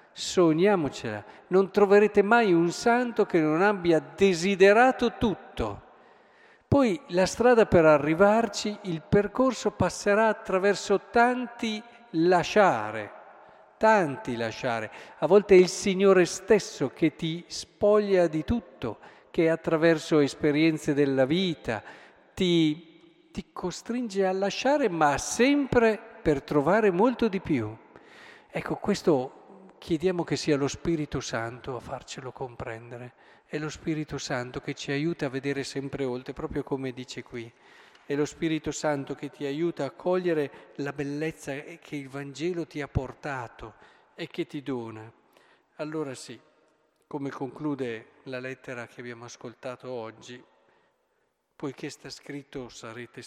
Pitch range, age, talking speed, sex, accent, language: 125-180 Hz, 50-69, 125 wpm, male, native, Italian